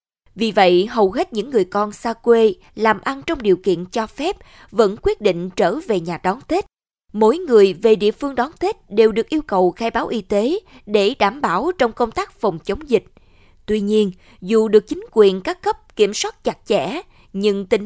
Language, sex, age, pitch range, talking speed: Vietnamese, female, 20-39, 195-255 Hz, 210 wpm